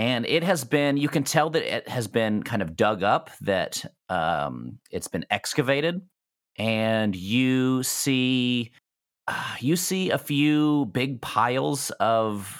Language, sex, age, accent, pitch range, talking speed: English, male, 30-49, American, 100-145 Hz, 150 wpm